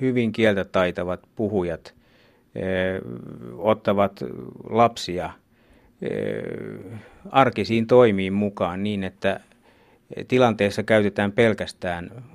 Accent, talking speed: native, 70 wpm